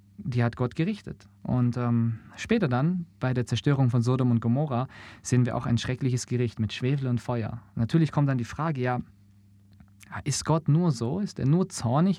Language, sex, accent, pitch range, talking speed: German, male, German, 110-140 Hz, 195 wpm